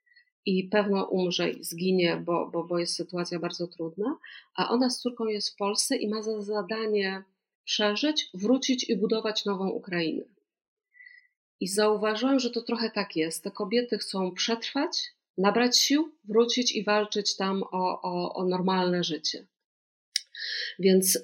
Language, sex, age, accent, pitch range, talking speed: Polish, female, 40-59, native, 185-225 Hz, 145 wpm